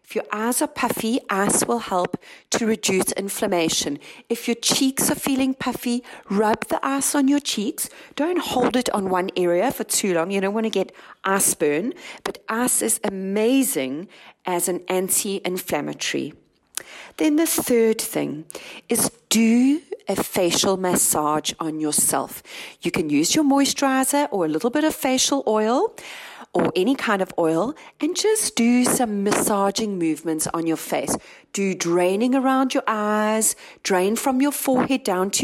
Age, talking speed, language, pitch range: 40-59, 160 wpm, English, 190-265 Hz